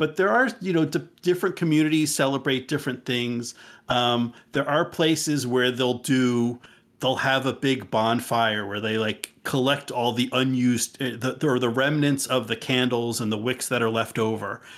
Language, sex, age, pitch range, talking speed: English, male, 40-59, 115-135 Hz, 180 wpm